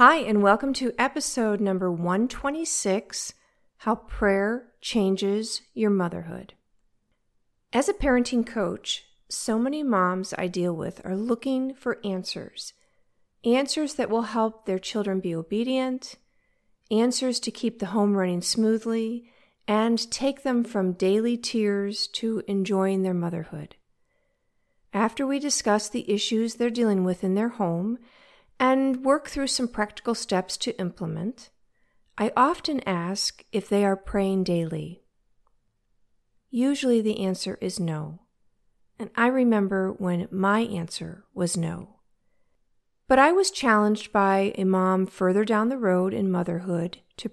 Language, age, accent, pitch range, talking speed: English, 50-69, American, 190-240 Hz, 135 wpm